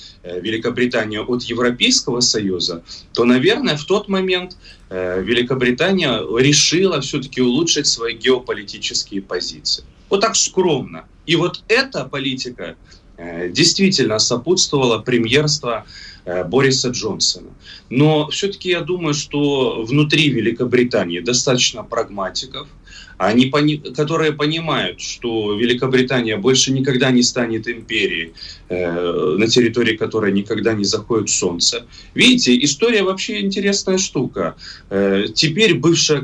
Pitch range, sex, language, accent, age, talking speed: 115-155 Hz, male, Russian, native, 30-49, 100 wpm